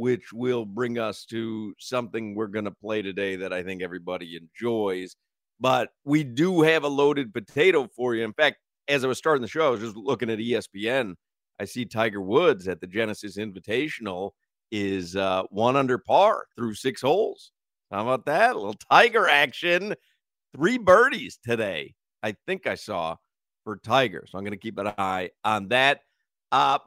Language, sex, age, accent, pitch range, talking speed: English, male, 50-69, American, 110-165 Hz, 180 wpm